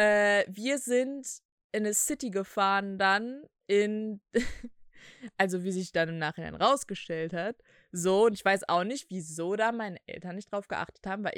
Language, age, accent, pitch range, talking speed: German, 20-39, German, 180-220 Hz, 165 wpm